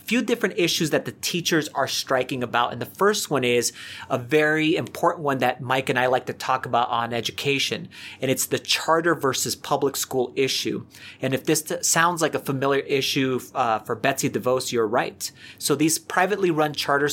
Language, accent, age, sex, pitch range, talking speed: English, American, 30-49, male, 125-155 Hz, 195 wpm